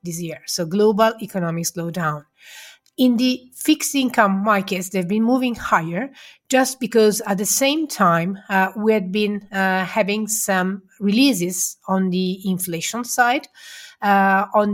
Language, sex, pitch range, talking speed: English, female, 180-215 Hz, 145 wpm